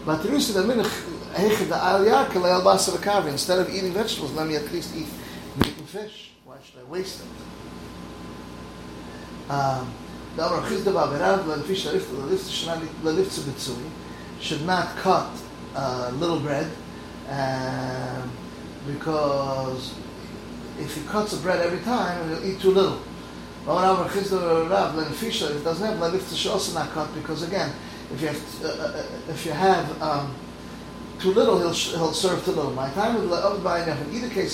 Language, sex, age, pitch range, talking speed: English, male, 30-49, 130-185 Hz, 120 wpm